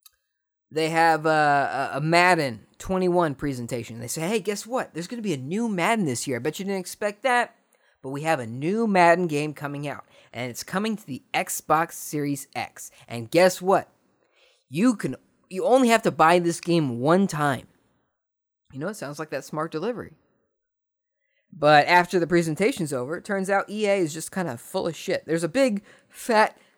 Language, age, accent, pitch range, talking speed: English, 20-39, American, 140-200 Hz, 190 wpm